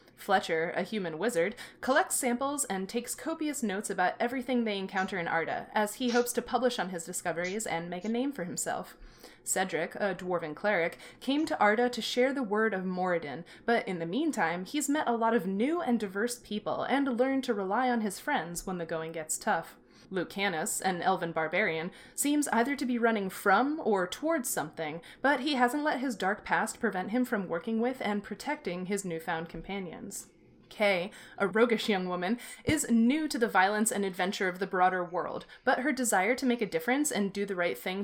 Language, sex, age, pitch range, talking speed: English, female, 20-39, 185-245 Hz, 200 wpm